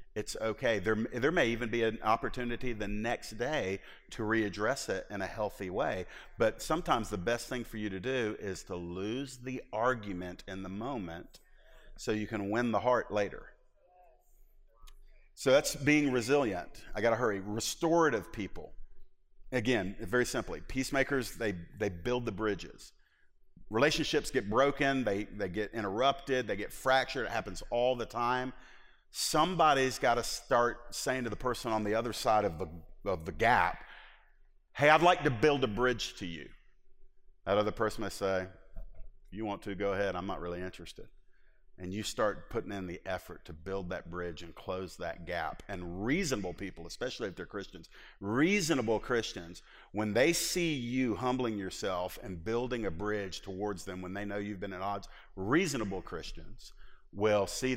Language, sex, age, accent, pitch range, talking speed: English, male, 40-59, American, 95-125 Hz, 170 wpm